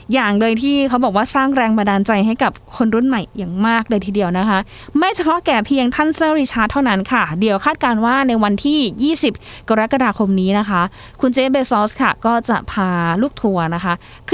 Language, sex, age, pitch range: Thai, female, 20-39, 200-260 Hz